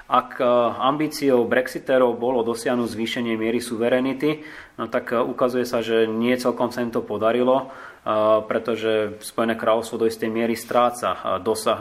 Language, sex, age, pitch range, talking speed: Slovak, male, 20-39, 110-125 Hz, 135 wpm